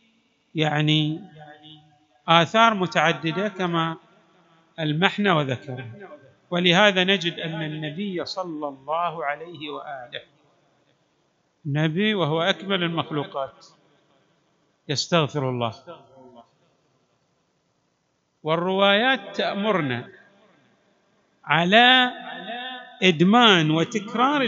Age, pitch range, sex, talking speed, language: 50-69, 150-205 Hz, male, 60 wpm, Arabic